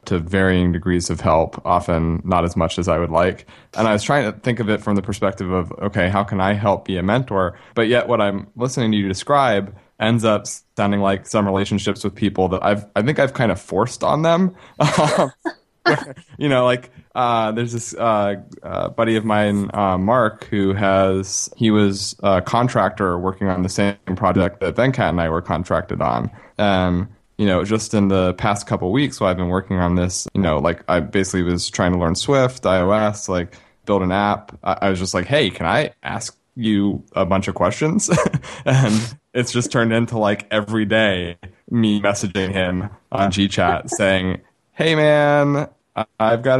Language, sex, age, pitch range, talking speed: English, male, 20-39, 95-120 Hz, 195 wpm